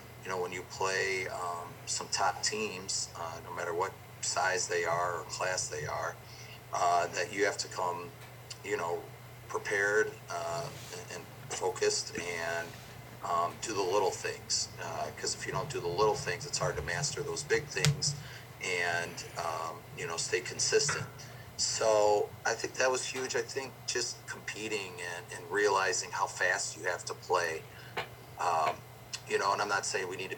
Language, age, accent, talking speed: English, 40-59, American, 175 wpm